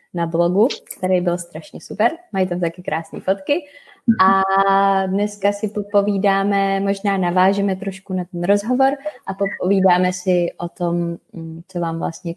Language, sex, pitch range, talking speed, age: Czech, female, 175-210 Hz, 140 wpm, 20-39